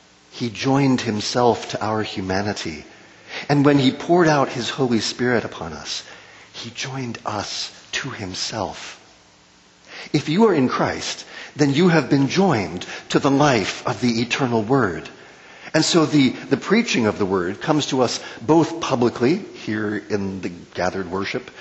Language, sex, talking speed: English, male, 155 wpm